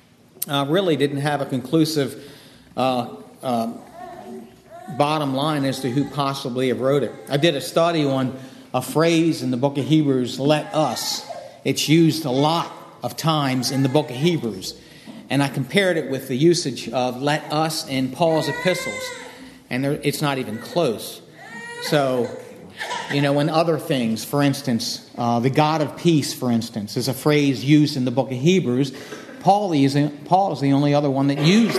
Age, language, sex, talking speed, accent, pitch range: 50-69, English, male, 175 wpm, American, 130-165 Hz